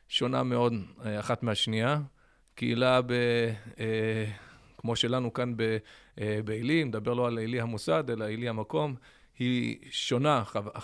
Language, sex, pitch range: Hebrew, male, 115-150 Hz